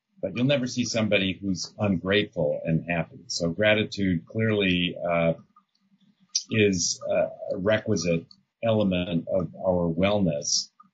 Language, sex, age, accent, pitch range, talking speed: English, male, 40-59, American, 85-105 Hz, 110 wpm